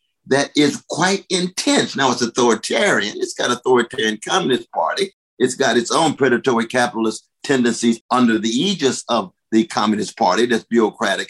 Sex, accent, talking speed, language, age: male, American, 150 wpm, English, 50-69